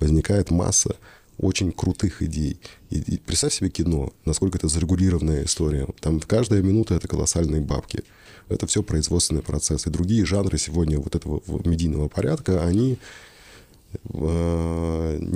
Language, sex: Russian, male